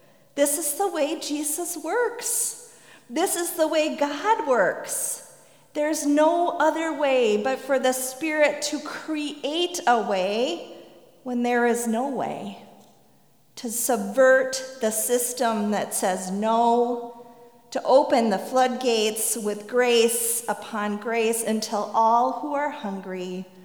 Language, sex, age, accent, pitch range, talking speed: English, female, 40-59, American, 225-305 Hz, 125 wpm